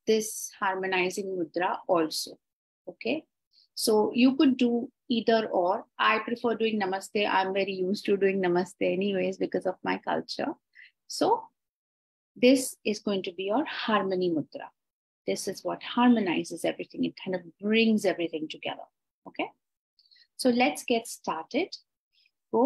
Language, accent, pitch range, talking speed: English, Indian, 185-245 Hz, 140 wpm